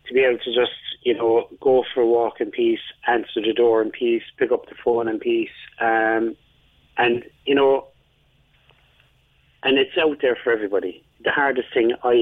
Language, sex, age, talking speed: English, male, 30-49, 185 wpm